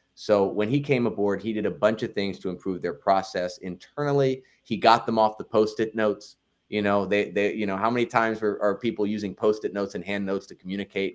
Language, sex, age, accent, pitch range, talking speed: English, male, 30-49, American, 95-110 Hz, 230 wpm